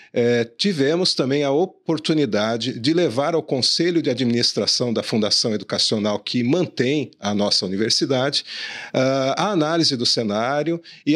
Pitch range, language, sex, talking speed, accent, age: 115-160 Hz, Portuguese, male, 125 wpm, Brazilian, 40-59